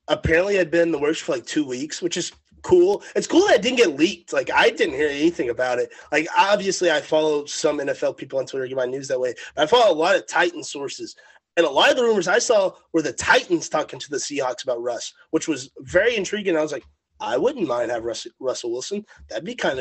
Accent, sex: American, male